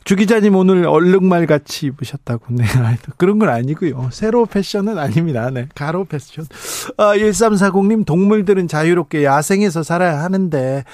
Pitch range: 145-195 Hz